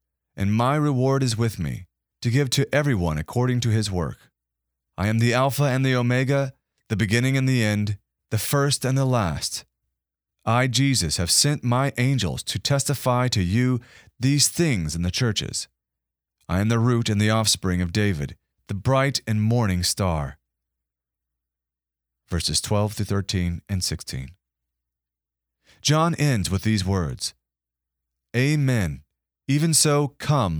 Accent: American